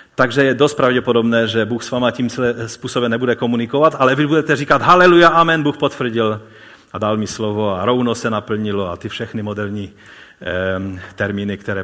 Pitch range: 105-150 Hz